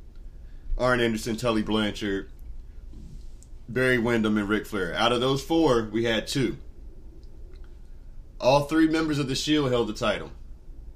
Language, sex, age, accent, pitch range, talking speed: English, male, 30-49, American, 100-130 Hz, 135 wpm